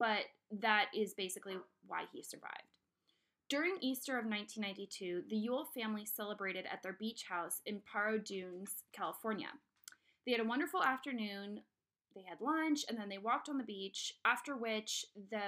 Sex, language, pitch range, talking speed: female, English, 200-255 Hz, 160 wpm